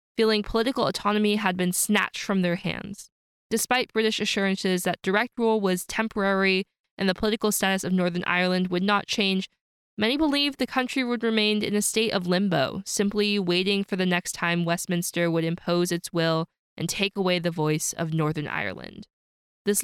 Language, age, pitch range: English, 20-39, 180-220 Hz